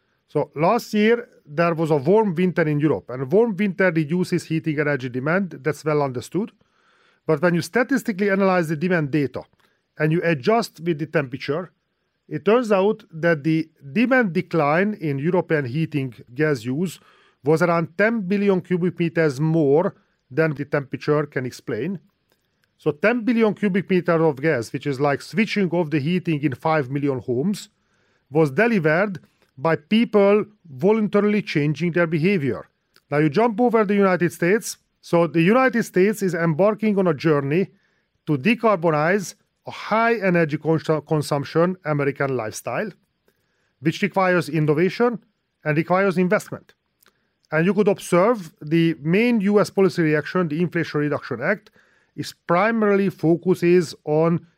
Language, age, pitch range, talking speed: English, 40-59, 155-200 Hz, 145 wpm